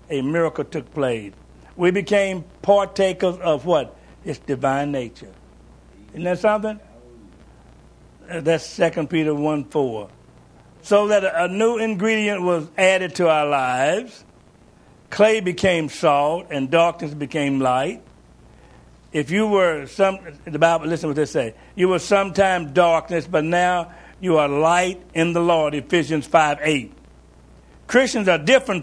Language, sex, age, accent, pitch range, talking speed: English, male, 60-79, American, 140-190 Hz, 135 wpm